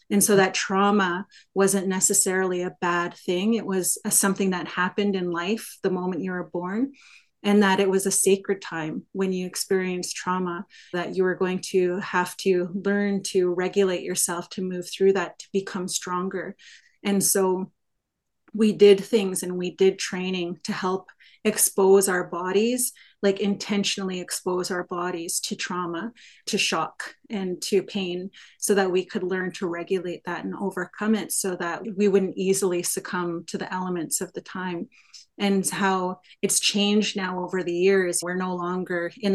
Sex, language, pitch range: female, English, 180-195 Hz